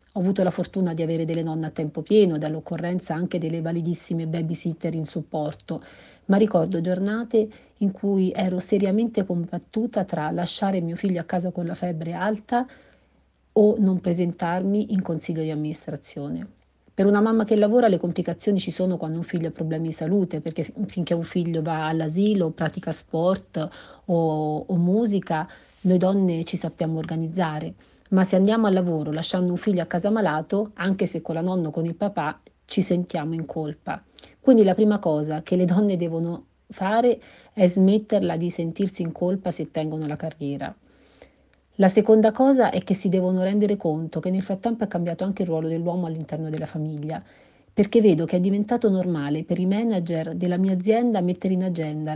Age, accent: 40-59, native